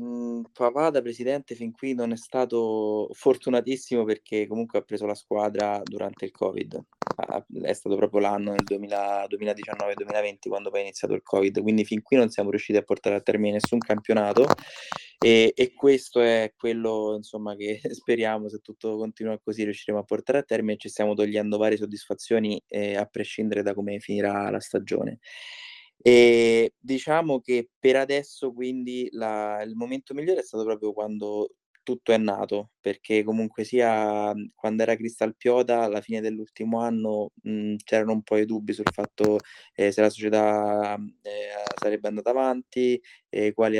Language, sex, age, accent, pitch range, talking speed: Italian, male, 20-39, native, 105-120 Hz, 165 wpm